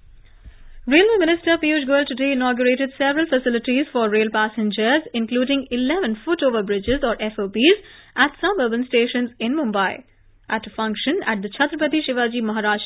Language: English